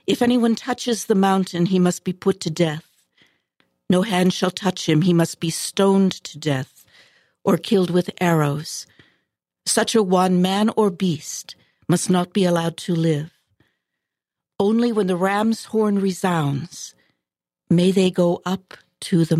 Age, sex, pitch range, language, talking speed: 60-79, female, 155-195 Hz, English, 155 wpm